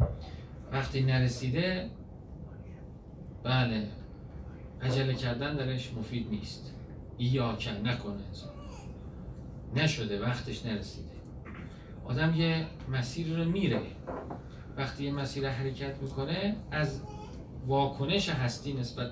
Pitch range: 110-145 Hz